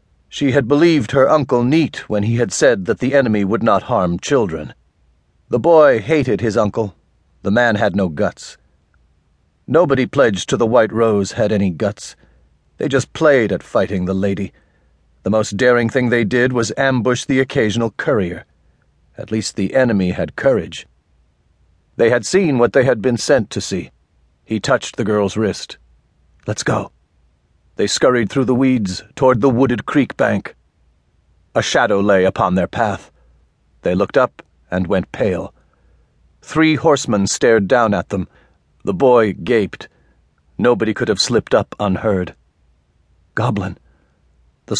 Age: 40-59